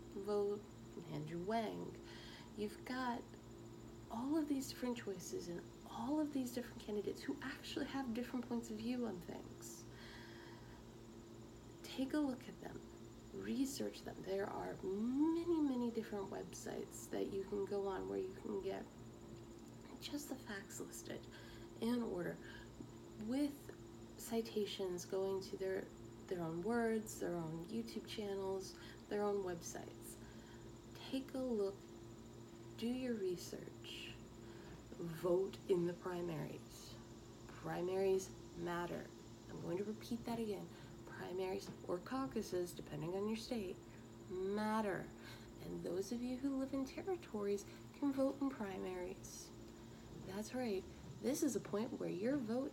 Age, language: 30-49, English